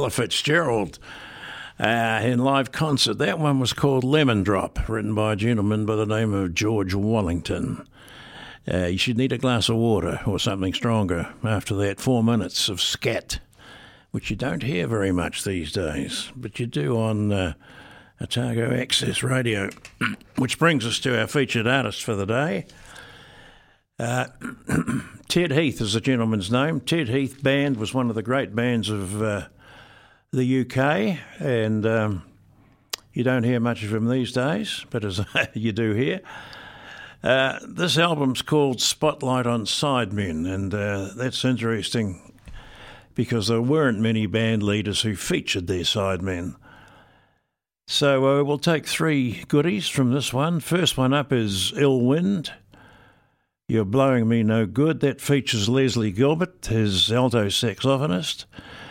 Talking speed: 150 wpm